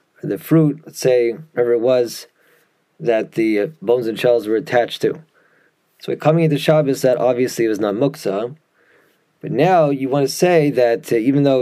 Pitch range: 120-155 Hz